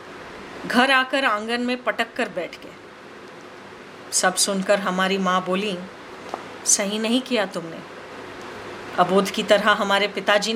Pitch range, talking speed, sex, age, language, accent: 215-285 Hz, 125 wpm, female, 30-49, Hindi, native